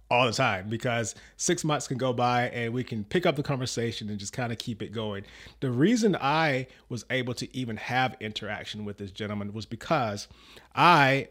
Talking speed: 200 wpm